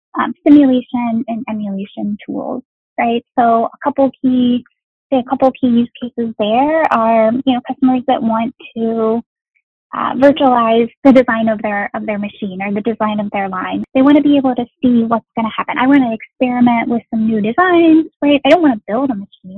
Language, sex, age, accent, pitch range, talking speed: English, female, 10-29, American, 220-260 Hz, 200 wpm